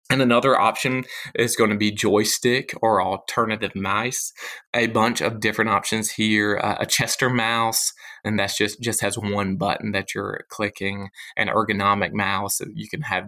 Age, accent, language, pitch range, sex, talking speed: 20-39, American, English, 105-120 Hz, male, 165 wpm